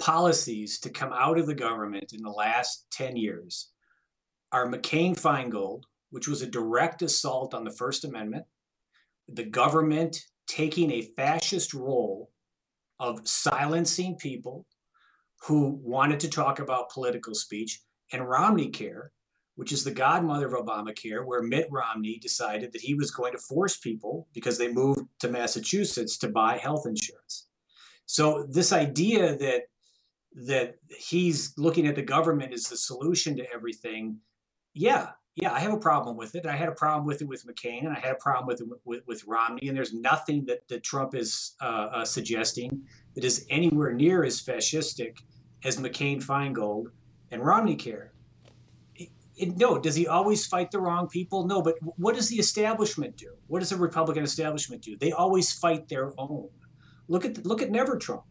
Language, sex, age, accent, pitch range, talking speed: English, male, 40-59, American, 120-165 Hz, 170 wpm